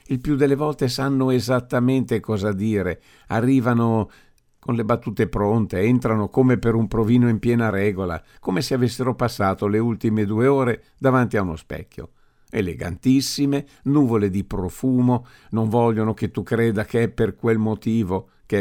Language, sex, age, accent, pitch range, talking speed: Italian, male, 50-69, native, 100-125 Hz, 155 wpm